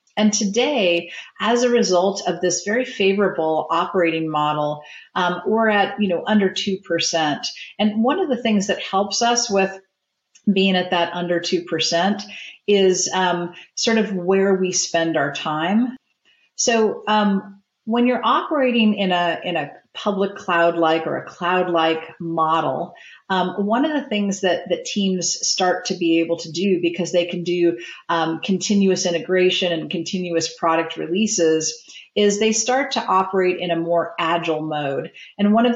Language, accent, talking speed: English, American, 160 wpm